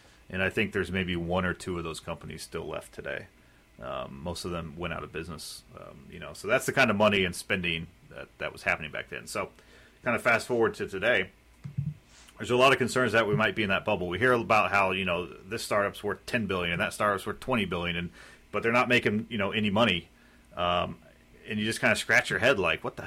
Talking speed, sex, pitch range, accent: 245 wpm, male, 90-110 Hz, American